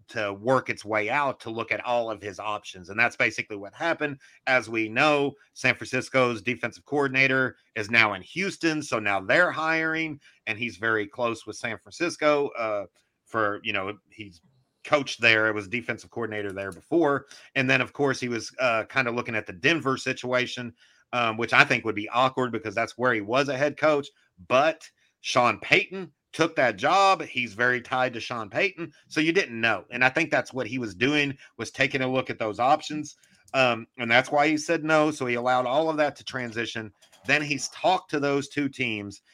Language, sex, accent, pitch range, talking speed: English, male, American, 110-140 Hz, 205 wpm